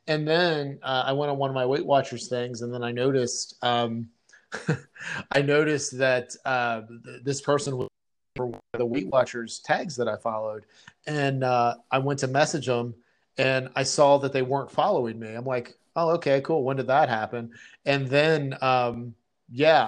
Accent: American